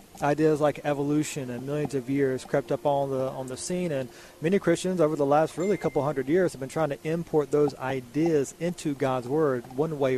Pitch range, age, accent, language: 135-165 Hz, 30-49, American, English